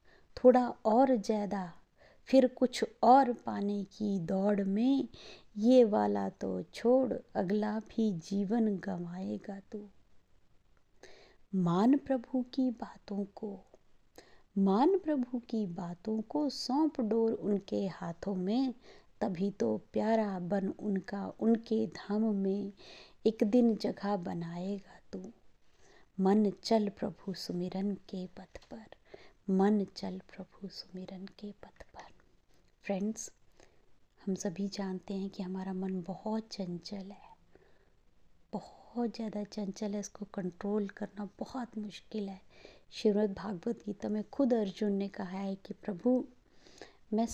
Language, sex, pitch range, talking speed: Hindi, female, 195-230 Hz, 120 wpm